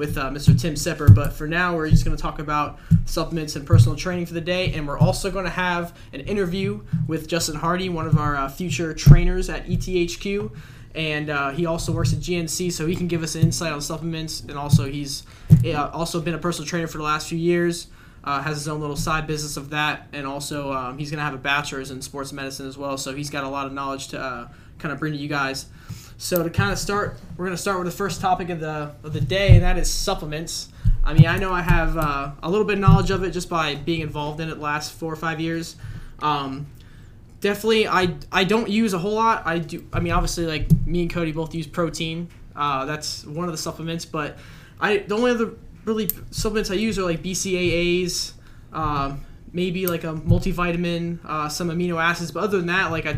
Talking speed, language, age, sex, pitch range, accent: 235 wpm, English, 20-39, male, 145-175 Hz, American